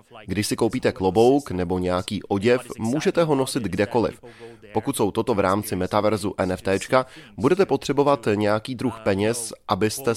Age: 20-39